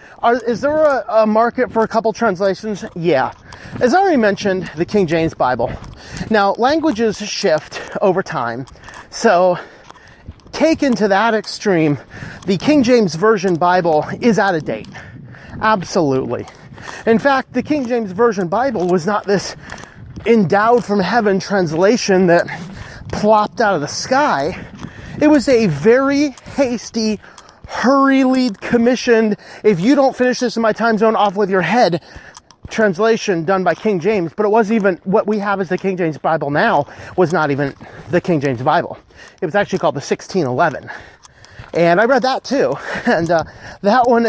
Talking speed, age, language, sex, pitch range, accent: 155 wpm, 30-49, English, male, 175-230 Hz, American